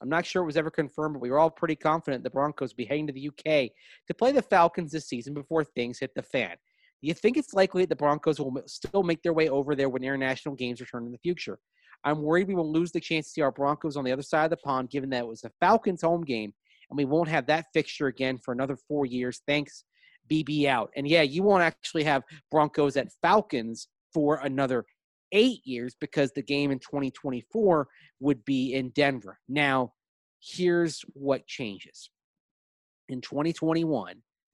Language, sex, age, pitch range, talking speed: English, male, 30-49, 120-155 Hz, 210 wpm